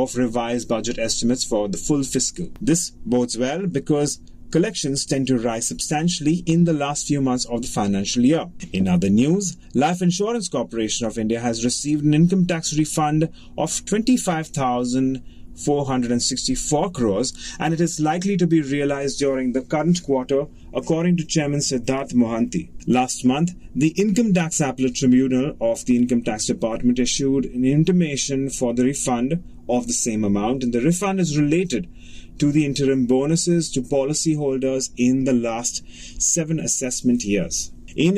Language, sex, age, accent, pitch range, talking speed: English, male, 30-49, Indian, 125-160 Hz, 165 wpm